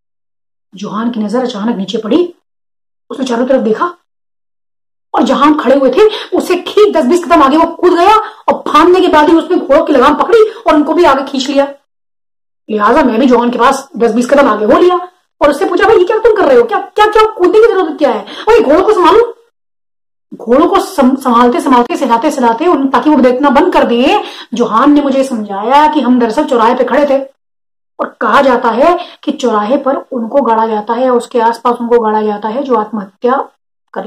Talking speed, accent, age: 155 wpm, Indian, 30-49